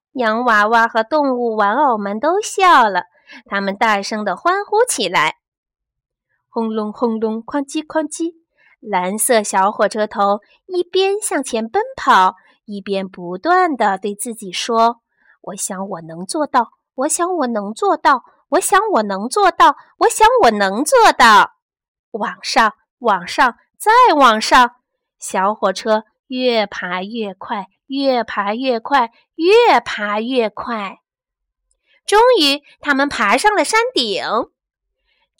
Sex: female